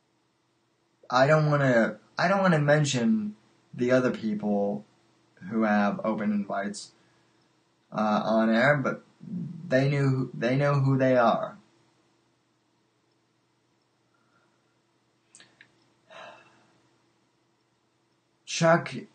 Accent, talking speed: American, 90 wpm